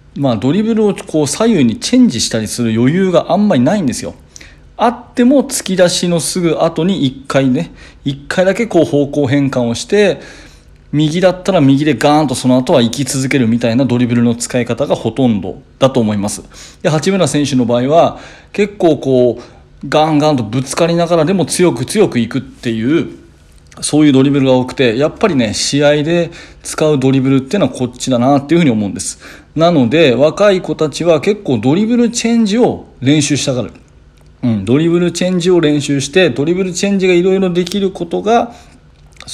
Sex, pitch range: male, 125-180 Hz